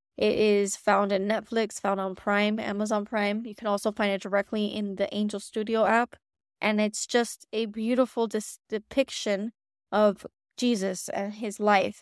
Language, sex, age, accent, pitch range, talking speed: English, female, 20-39, American, 200-225 Hz, 165 wpm